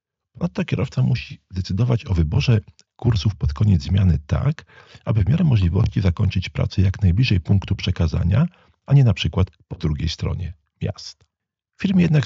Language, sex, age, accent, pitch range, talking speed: Polish, male, 40-59, native, 90-115 Hz, 155 wpm